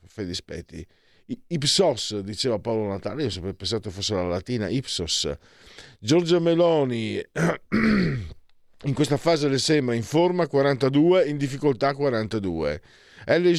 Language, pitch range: Italian, 100-145 Hz